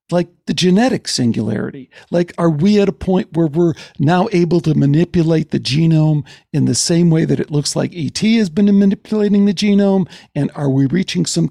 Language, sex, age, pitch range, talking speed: English, male, 60-79, 140-200 Hz, 195 wpm